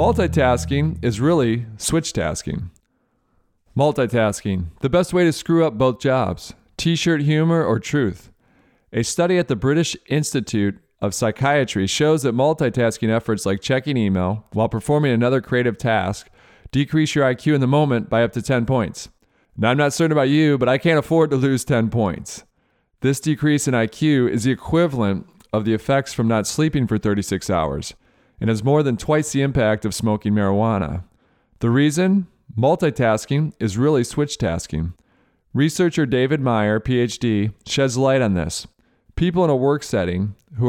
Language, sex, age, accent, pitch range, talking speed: English, male, 40-59, American, 110-145 Hz, 160 wpm